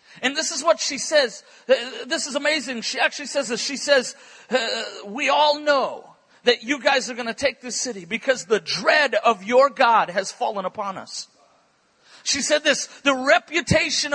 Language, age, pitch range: English, 50-69, 260-315 Hz